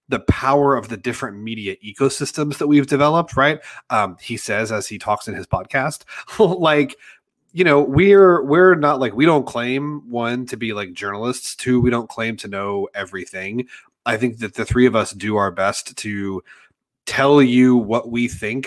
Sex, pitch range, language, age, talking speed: male, 110-135 Hz, English, 30-49, 185 wpm